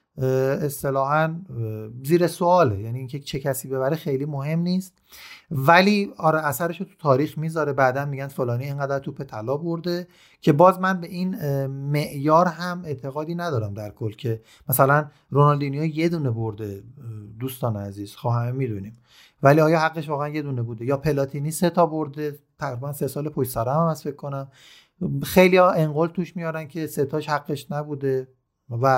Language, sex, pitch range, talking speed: Persian, male, 135-175 Hz, 155 wpm